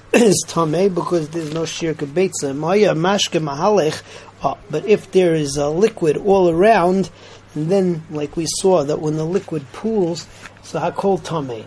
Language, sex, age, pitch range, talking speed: English, male, 30-49, 150-185 Hz, 150 wpm